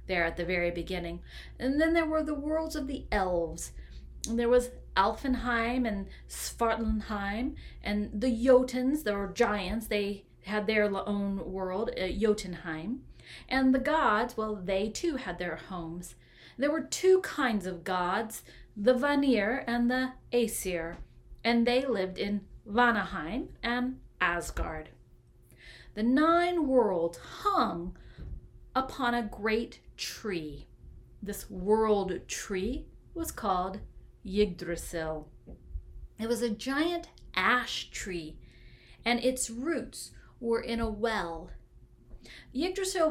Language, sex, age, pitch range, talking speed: English, female, 30-49, 190-255 Hz, 120 wpm